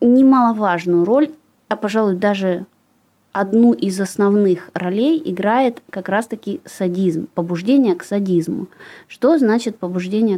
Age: 20-39